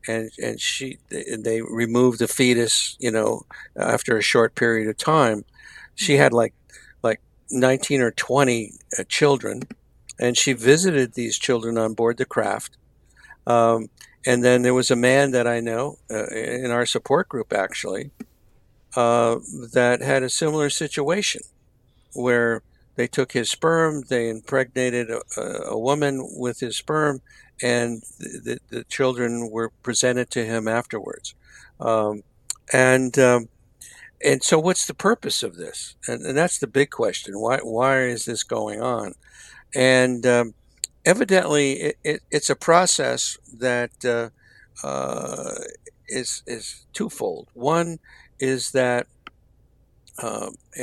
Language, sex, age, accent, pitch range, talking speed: English, male, 60-79, American, 115-140 Hz, 140 wpm